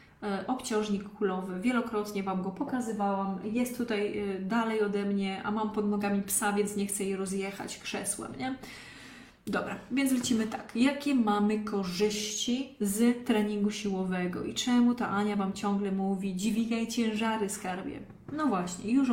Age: 20-39